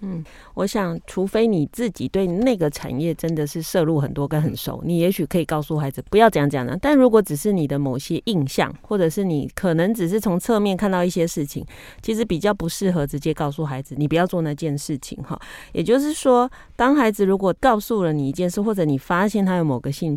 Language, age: Chinese, 30-49